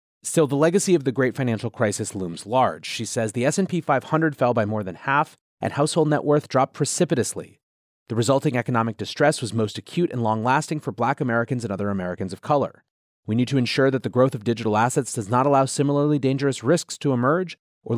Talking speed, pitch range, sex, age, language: 205 wpm, 115-150 Hz, male, 30-49, English